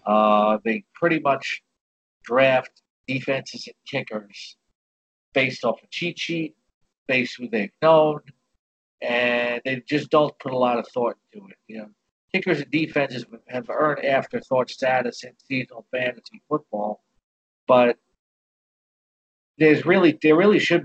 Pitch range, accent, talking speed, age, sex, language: 115-160 Hz, American, 140 wpm, 50-69, male, English